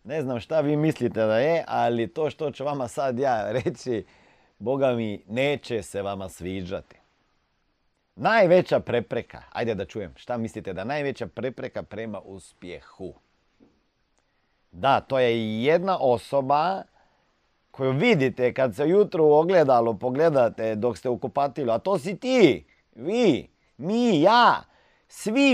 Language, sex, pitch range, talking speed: Croatian, male, 115-155 Hz, 130 wpm